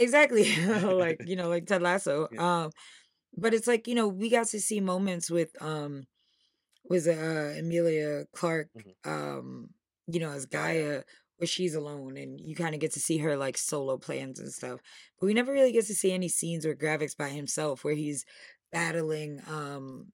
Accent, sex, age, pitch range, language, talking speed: American, female, 10-29, 140-175 Hz, English, 185 wpm